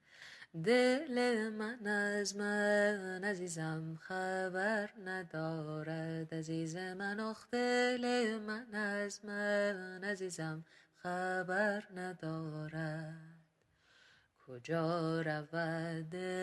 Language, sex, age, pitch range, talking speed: Persian, female, 30-49, 165-205 Hz, 80 wpm